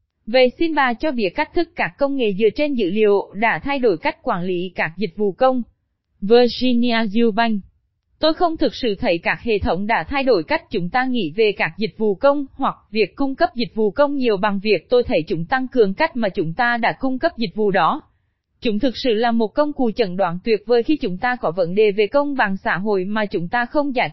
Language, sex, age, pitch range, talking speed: Vietnamese, female, 20-39, 210-260 Hz, 245 wpm